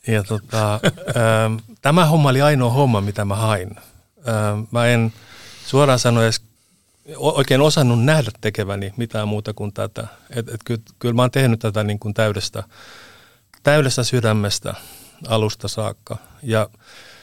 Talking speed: 130 wpm